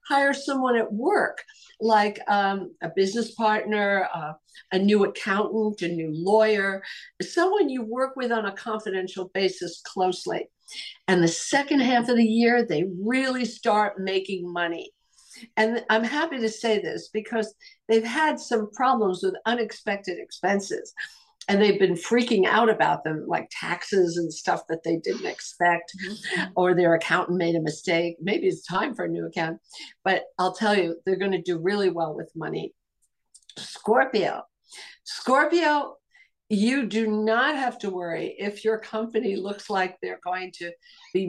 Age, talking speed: 60-79, 155 wpm